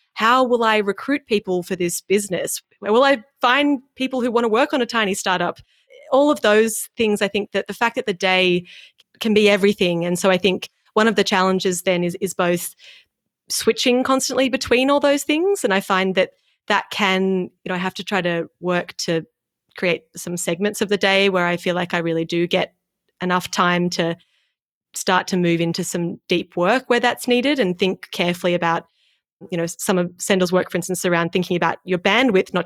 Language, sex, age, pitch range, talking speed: English, female, 20-39, 180-215 Hz, 210 wpm